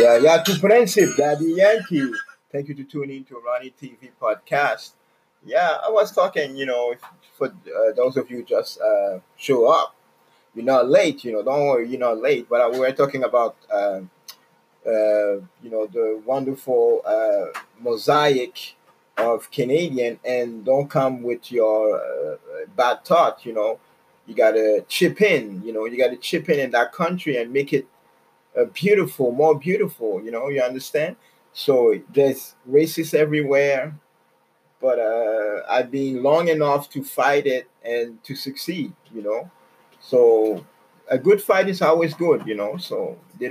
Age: 30-49